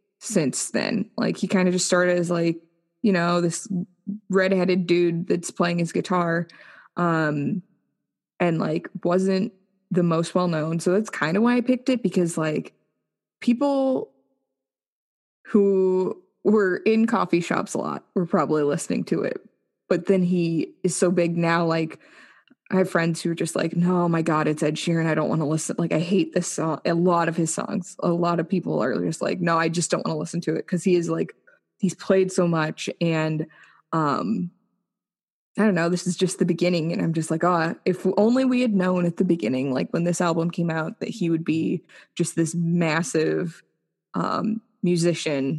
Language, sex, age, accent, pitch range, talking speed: English, female, 20-39, American, 165-190 Hz, 190 wpm